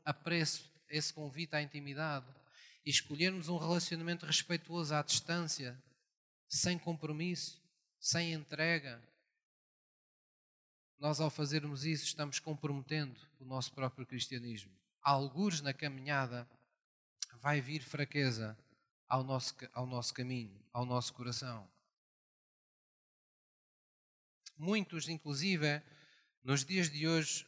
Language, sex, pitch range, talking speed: Portuguese, male, 140-165 Hz, 100 wpm